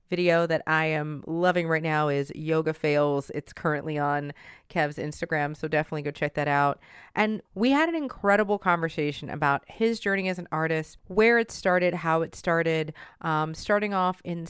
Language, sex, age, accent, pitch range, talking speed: English, female, 30-49, American, 155-205 Hz, 180 wpm